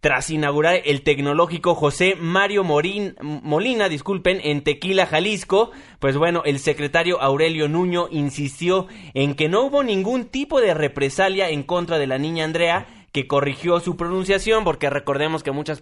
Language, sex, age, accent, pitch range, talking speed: Spanish, male, 20-39, Mexican, 130-175 Hz, 150 wpm